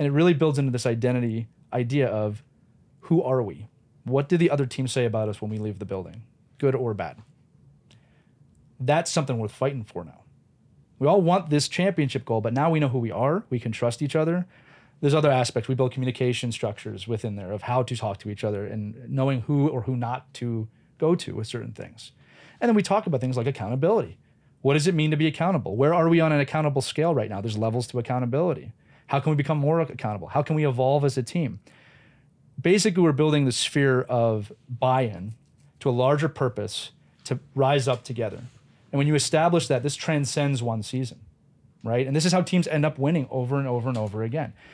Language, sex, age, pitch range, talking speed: English, male, 30-49, 120-155 Hz, 215 wpm